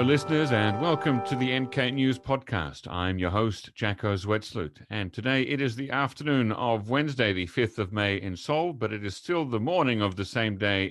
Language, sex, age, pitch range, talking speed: English, male, 40-59, 95-125 Hz, 210 wpm